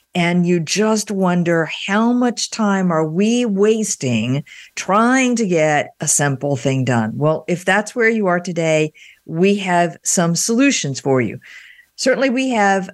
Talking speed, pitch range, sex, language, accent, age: 155 wpm, 160-210 Hz, female, English, American, 50-69